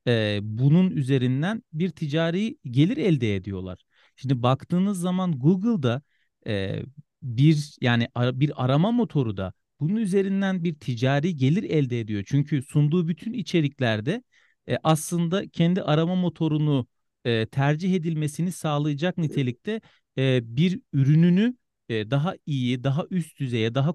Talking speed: 130 wpm